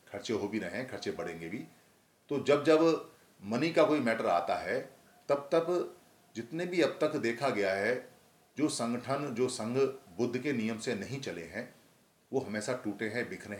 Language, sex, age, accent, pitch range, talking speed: Hindi, male, 40-59, native, 105-125 Hz, 180 wpm